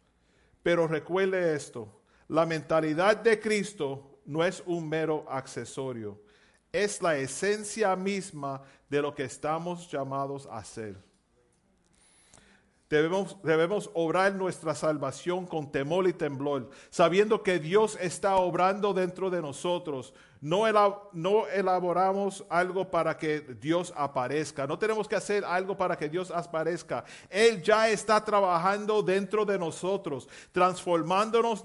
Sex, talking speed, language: male, 125 wpm, Spanish